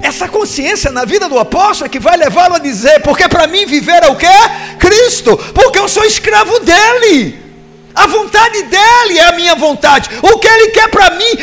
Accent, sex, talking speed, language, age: Brazilian, male, 200 wpm, Portuguese, 50-69